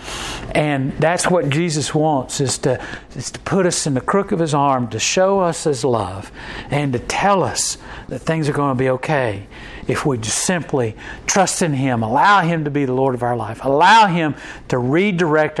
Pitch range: 130-165 Hz